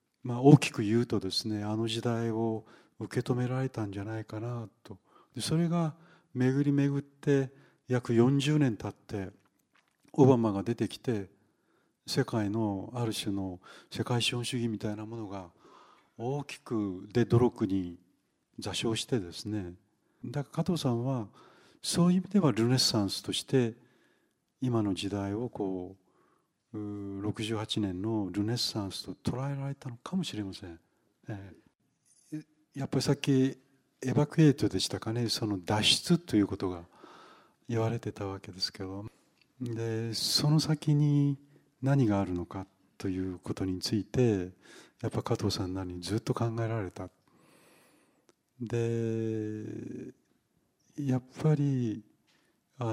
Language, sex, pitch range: Japanese, male, 105-130 Hz